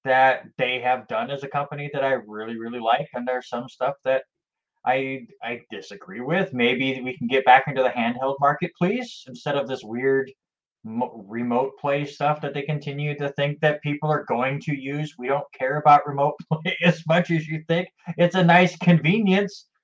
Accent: American